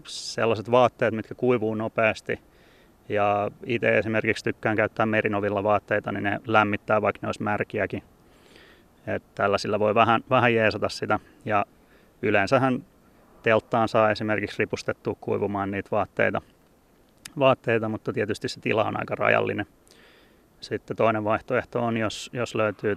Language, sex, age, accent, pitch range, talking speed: Finnish, male, 30-49, native, 105-120 Hz, 130 wpm